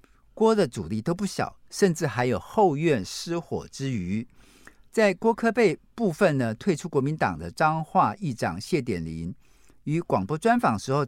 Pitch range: 125-185 Hz